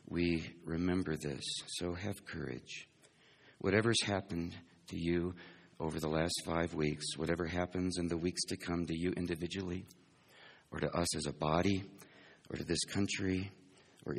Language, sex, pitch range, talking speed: English, male, 80-90 Hz, 150 wpm